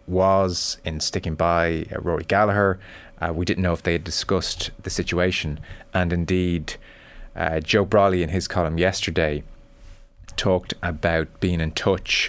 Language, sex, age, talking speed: English, male, 30-49, 150 wpm